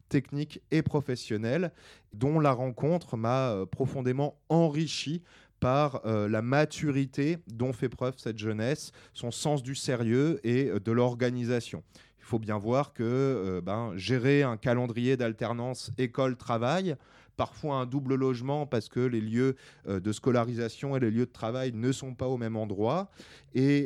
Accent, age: French, 20-39